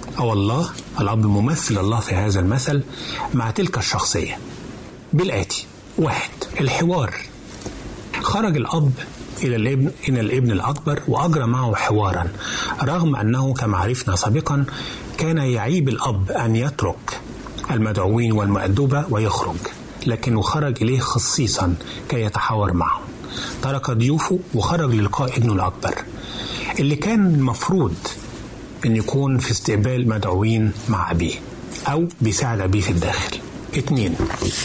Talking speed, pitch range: 115 wpm, 105-140 Hz